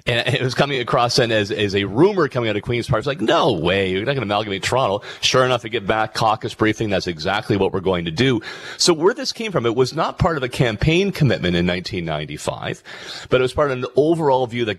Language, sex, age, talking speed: English, male, 40-59, 255 wpm